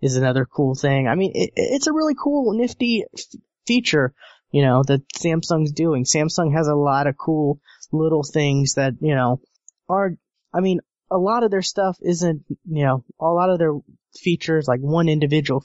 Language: English